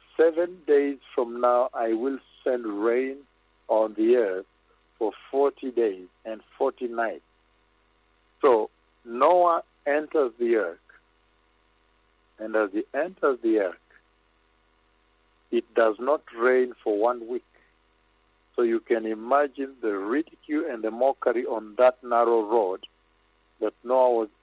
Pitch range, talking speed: 80-125 Hz, 125 wpm